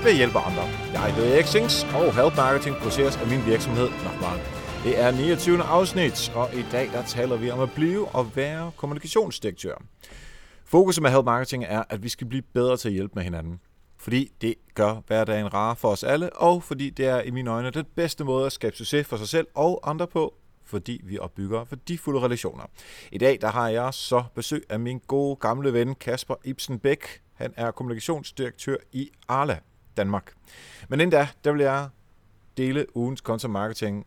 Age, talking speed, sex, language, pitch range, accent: 30-49, 190 wpm, male, Danish, 115-145 Hz, native